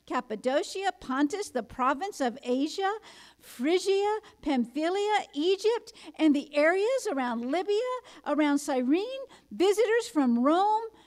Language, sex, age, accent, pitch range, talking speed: English, female, 50-69, American, 270-370 Hz, 105 wpm